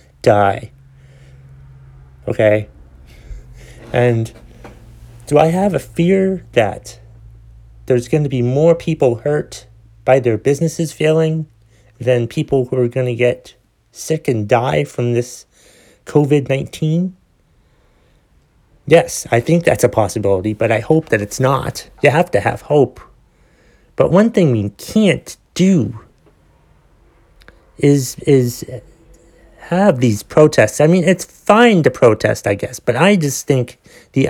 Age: 30-49